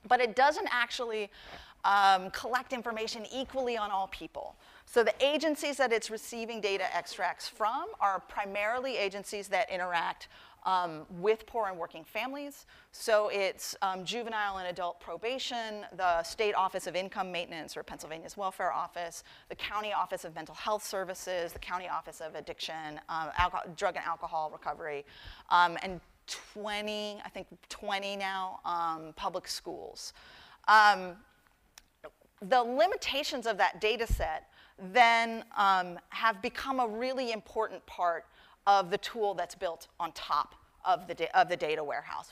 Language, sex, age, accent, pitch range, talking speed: English, female, 30-49, American, 175-225 Hz, 145 wpm